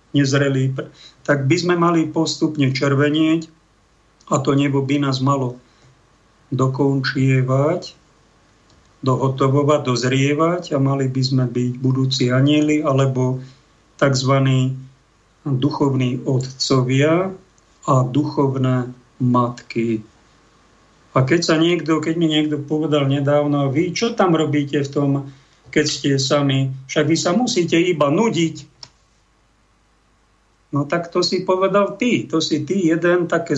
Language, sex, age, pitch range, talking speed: Slovak, male, 50-69, 135-155 Hz, 115 wpm